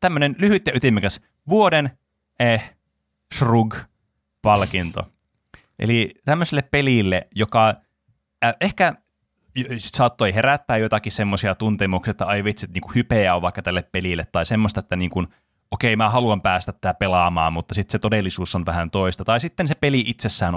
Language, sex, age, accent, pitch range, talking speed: Finnish, male, 20-39, native, 90-120 Hz, 145 wpm